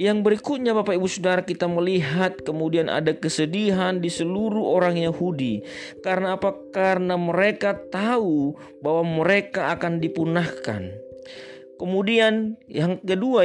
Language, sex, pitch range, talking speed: Indonesian, male, 145-185 Hz, 115 wpm